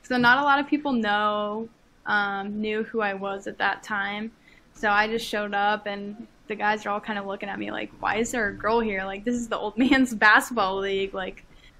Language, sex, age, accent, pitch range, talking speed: English, female, 10-29, American, 205-230 Hz, 235 wpm